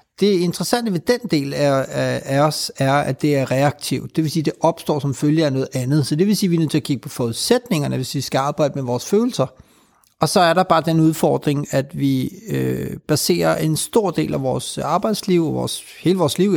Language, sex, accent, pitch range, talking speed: Danish, male, native, 140-175 Hz, 230 wpm